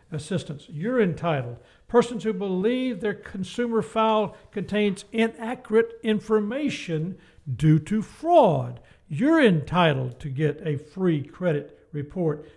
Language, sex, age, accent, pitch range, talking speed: English, male, 60-79, American, 155-225 Hz, 110 wpm